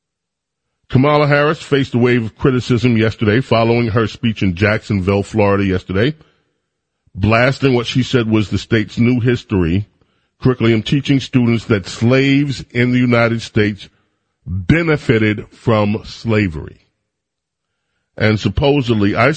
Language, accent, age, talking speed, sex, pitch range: English, American, 40-59, 120 wpm, male, 100-125 Hz